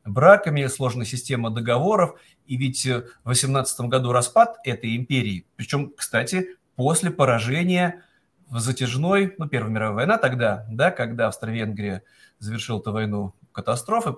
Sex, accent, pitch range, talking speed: male, native, 115-160 Hz, 125 wpm